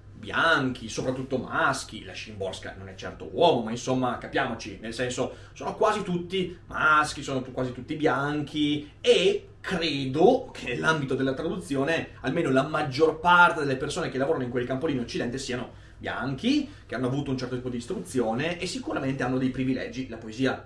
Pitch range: 115-145 Hz